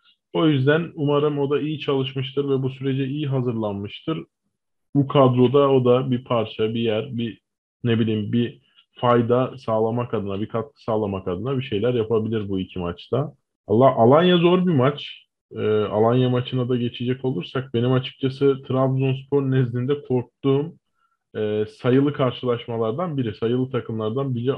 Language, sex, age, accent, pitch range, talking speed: Turkish, male, 20-39, native, 110-135 Hz, 145 wpm